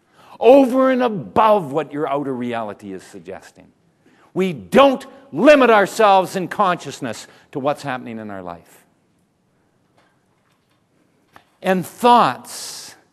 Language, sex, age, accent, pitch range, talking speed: English, male, 50-69, American, 145-210 Hz, 105 wpm